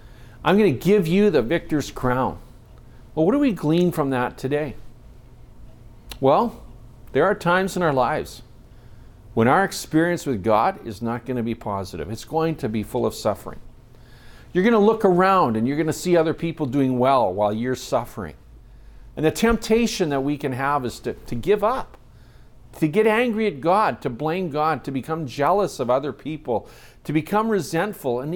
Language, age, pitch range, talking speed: English, 50-69, 115-165 Hz, 185 wpm